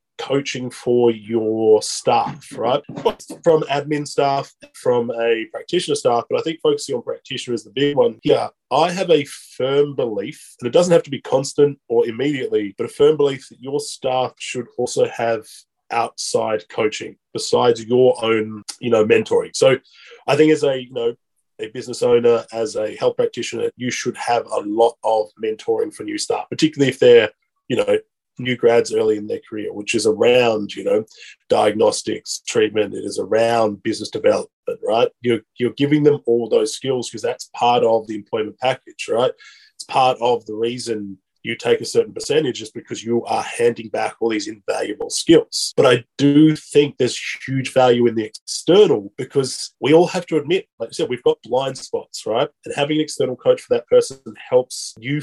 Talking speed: 185 wpm